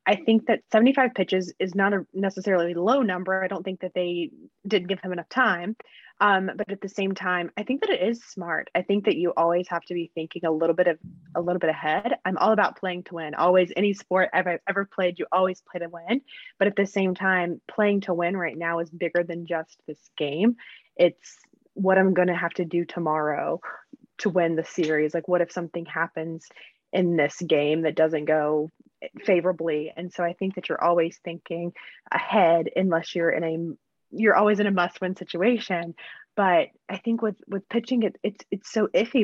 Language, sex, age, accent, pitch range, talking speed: English, female, 20-39, American, 170-200 Hz, 210 wpm